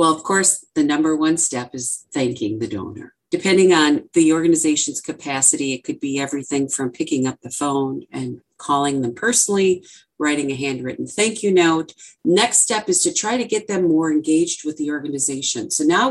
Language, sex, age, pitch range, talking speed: English, female, 50-69, 145-195 Hz, 185 wpm